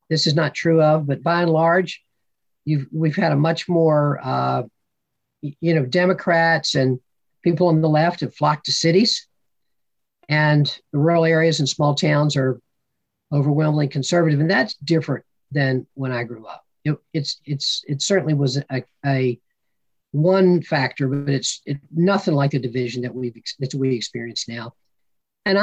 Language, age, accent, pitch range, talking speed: English, 50-69, American, 135-175 Hz, 165 wpm